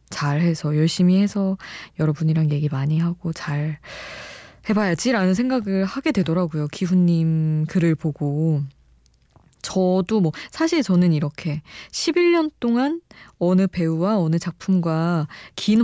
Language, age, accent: Korean, 20-39, native